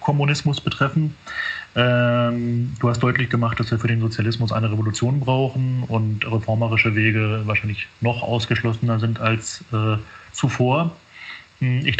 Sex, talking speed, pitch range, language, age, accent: male, 120 wpm, 110-125 Hz, German, 30-49, German